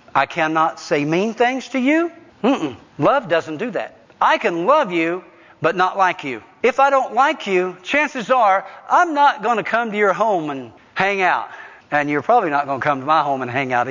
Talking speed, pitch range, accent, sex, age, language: 225 wpm, 140-210 Hz, American, male, 50-69, English